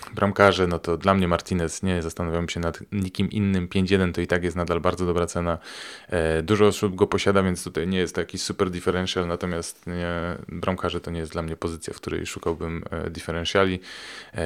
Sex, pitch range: male, 85-100 Hz